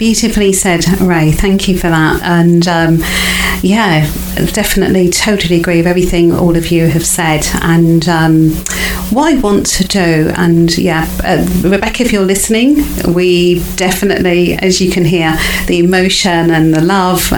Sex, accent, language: female, British, English